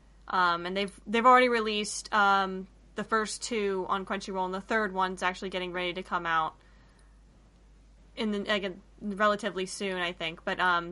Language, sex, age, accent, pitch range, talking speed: English, female, 10-29, American, 180-210 Hz, 170 wpm